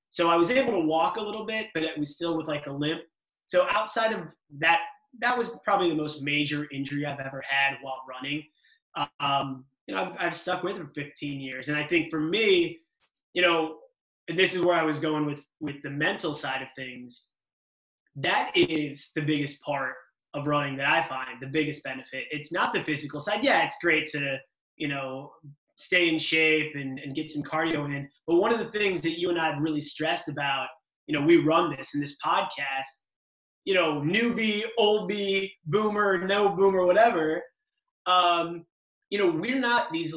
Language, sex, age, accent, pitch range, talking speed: English, male, 20-39, American, 145-185 Hz, 200 wpm